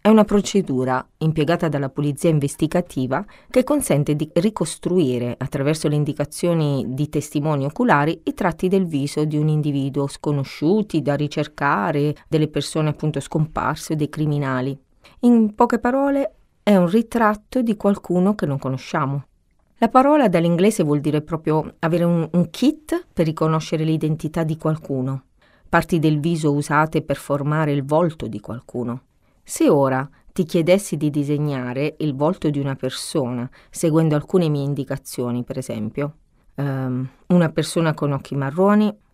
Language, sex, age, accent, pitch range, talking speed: Italian, female, 30-49, native, 140-175 Hz, 140 wpm